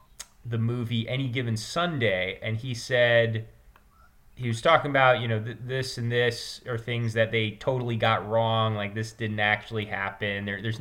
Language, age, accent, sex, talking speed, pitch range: English, 20-39, American, male, 170 wpm, 110-135 Hz